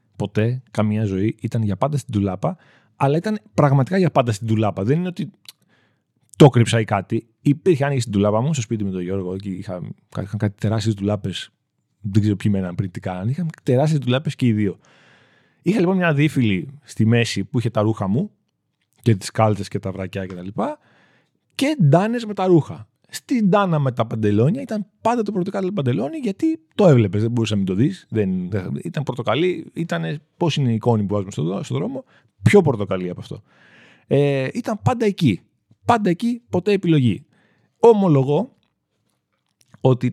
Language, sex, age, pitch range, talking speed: Greek, male, 30-49, 110-170 Hz, 175 wpm